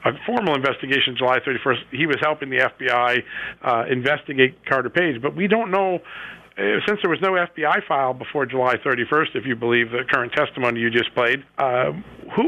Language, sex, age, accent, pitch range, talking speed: English, male, 50-69, American, 125-155 Hz, 185 wpm